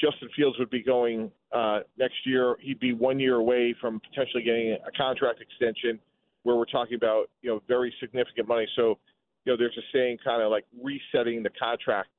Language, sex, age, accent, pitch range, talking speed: English, male, 40-59, American, 120-135 Hz, 195 wpm